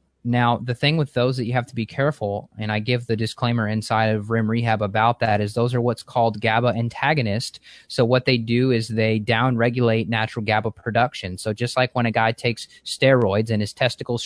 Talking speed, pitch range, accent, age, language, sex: 210 wpm, 110-135 Hz, American, 20-39, English, male